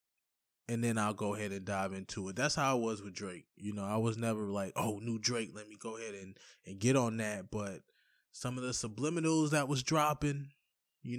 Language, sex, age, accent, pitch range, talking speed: English, male, 20-39, American, 105-145 Hz, 225 wpm